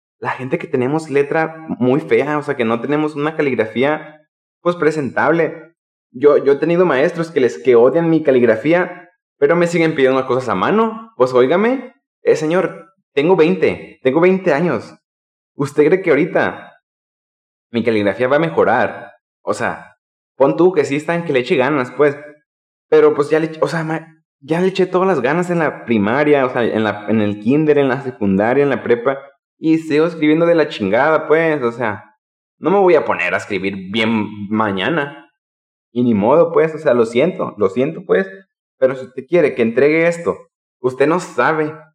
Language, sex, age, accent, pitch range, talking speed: Spanish, male, 20-39, Mexican, 120-165 Hz, 190 wpm